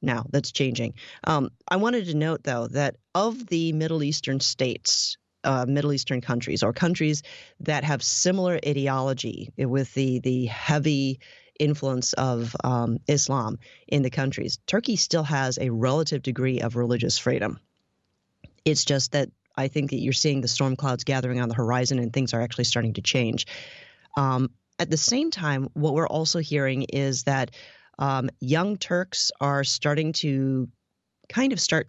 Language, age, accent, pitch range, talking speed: English, 30-49, American, 130-155 Hz, 165 wpm